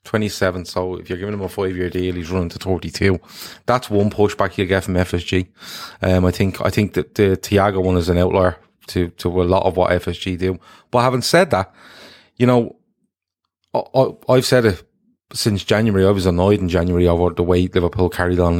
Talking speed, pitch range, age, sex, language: 205 wpm, 90-110 Hz, 20-39, male, English